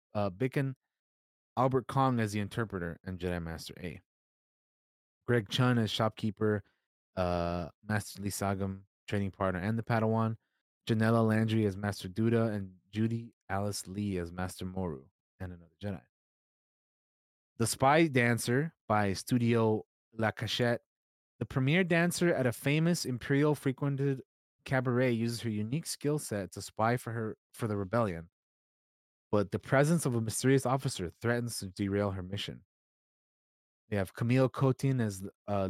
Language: English